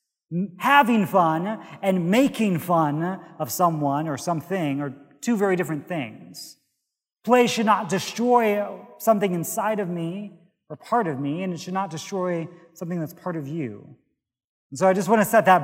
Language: English